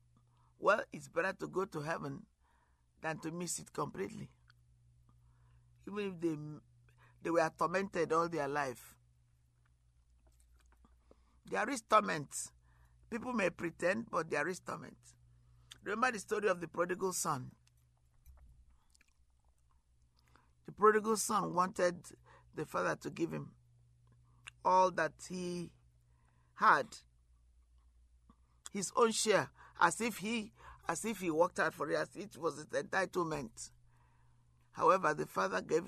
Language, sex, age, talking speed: English, male, 50-69, 120 wpm